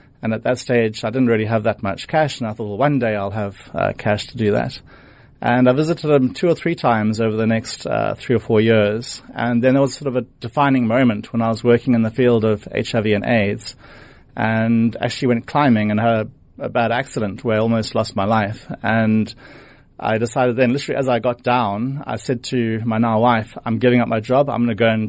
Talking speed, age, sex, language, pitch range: 240 wpm, 30-49, male, English, 110-130 Hz